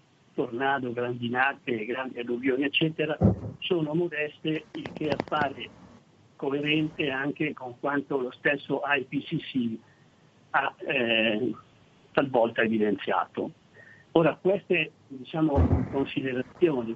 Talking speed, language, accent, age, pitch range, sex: 85 wpm, Italian, native, 60-79, 125-160 Hz, male